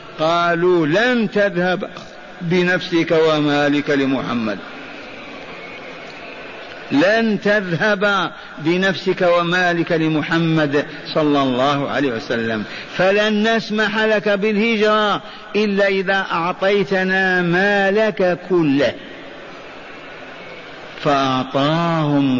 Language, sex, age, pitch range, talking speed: Arabic, male, 50-69, 170-205 Hz, 65 wpm